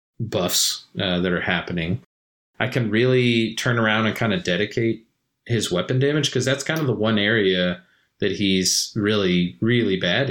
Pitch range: 95-125 Hz